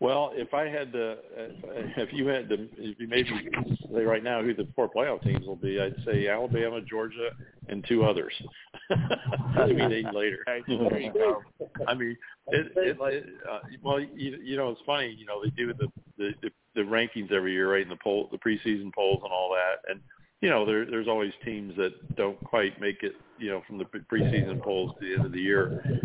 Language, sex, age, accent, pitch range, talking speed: English, male, 50-69, American, 100-130 Hz, 205 wpm